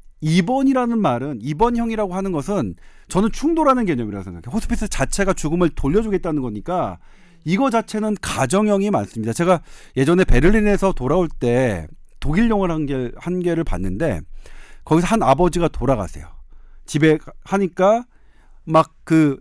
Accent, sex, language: native, male, Korean